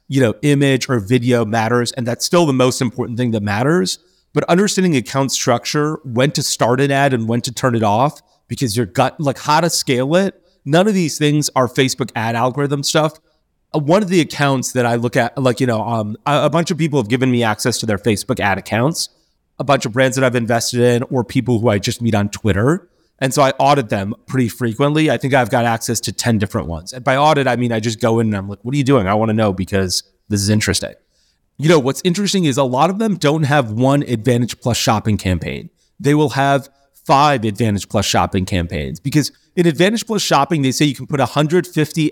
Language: English